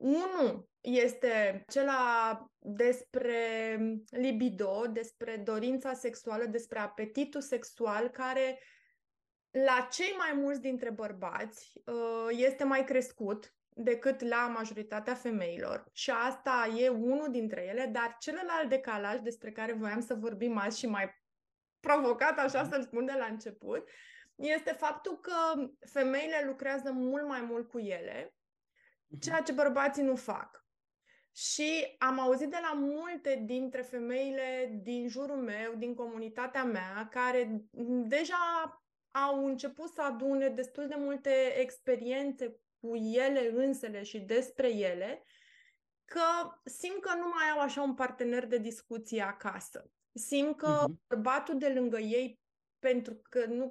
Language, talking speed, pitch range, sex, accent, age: Romanian, 130 wpm, 235-280 Hz, female, native, 20-39